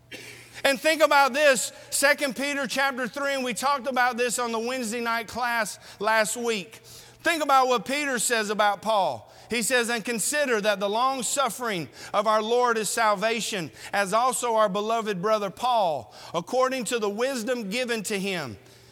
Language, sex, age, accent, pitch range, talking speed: English, male, 50-69, American, 205-260 Hz, 165 wpm